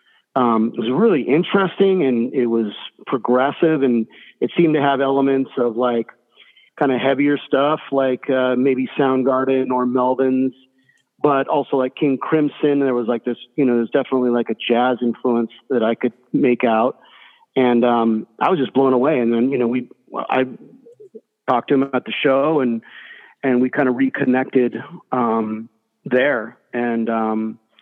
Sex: male